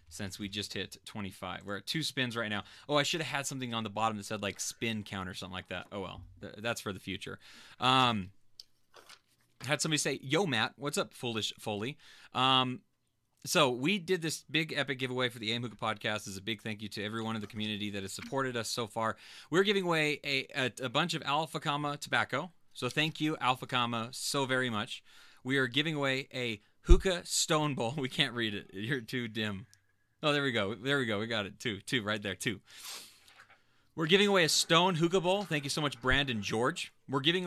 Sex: male